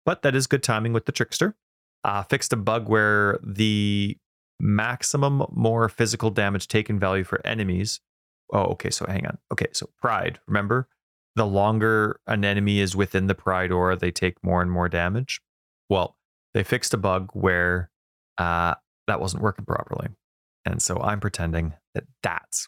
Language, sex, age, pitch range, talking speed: English, male, 30-49, 95-125 Hz, 165 wpm